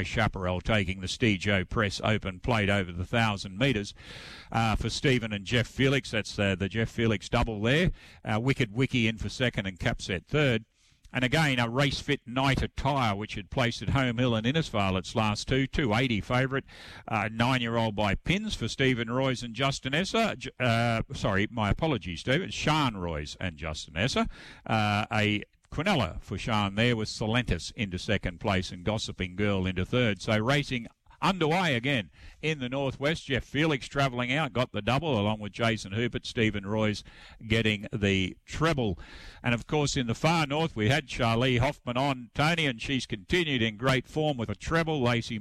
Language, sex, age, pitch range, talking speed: English, male, 50-69, 105-140 Hz, 180 wpm